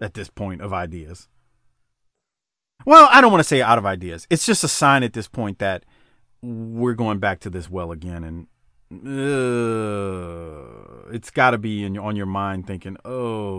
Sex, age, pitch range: male, 30-49, 100-135 Hz